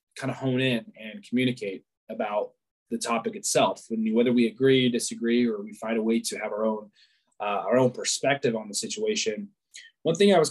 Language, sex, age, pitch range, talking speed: English, male, 20-39, 115-155 Hz, 200 wpm